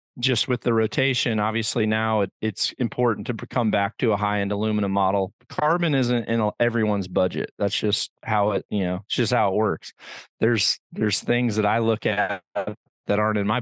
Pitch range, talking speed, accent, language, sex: 105-125 Hz, 190 wpm, American, English, male